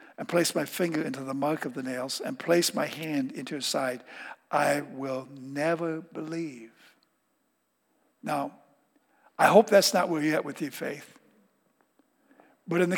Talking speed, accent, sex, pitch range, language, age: 160 wpm, American, male, 150-215 Hz, English, 60-79